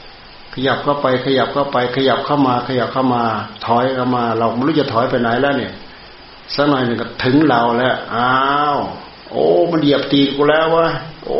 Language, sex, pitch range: Thai, male, 115-135 Hz